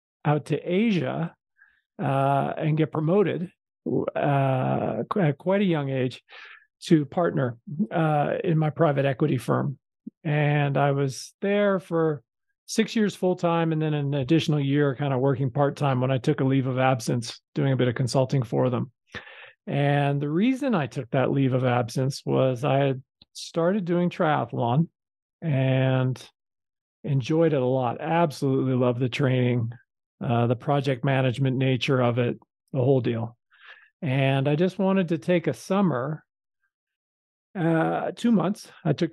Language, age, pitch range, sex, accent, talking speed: English, 40-59, 135-170 Hz, male, American, 150 wpm